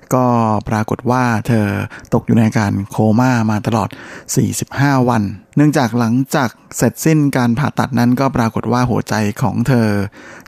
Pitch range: 110-135 Hz